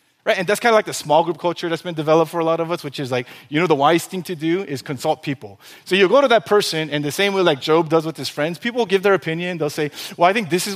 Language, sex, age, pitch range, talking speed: English, male, 30-49, 155-215 Hz, 335 wpm